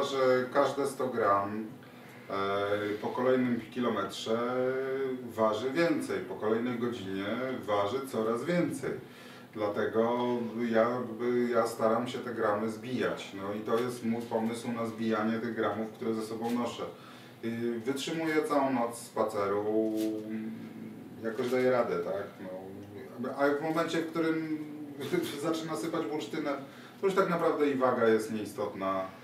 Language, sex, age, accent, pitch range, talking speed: Polish, male, 30-49, native, 110-135 Hz, 125 wpm